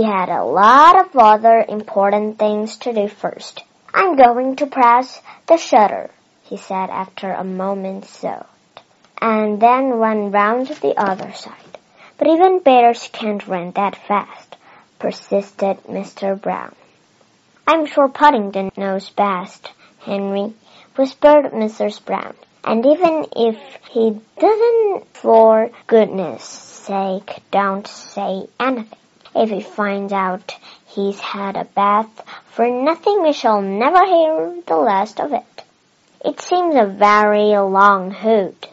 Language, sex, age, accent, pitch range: Chinese, male, 30-49, American, 200-265 Hz